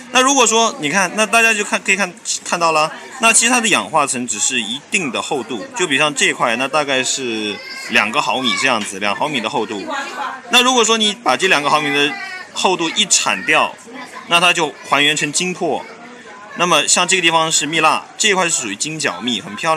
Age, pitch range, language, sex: 30-49, 140-225 Hz, Chinese, male